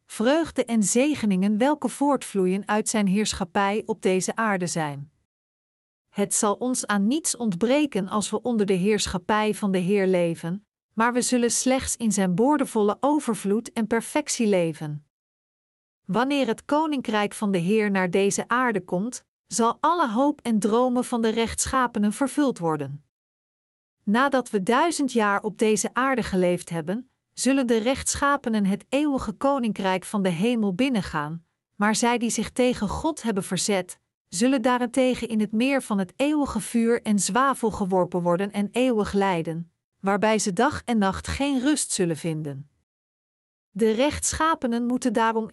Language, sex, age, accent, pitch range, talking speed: Dutch, female, 50-69, Dutch, 195-250 Hz, 150 wpm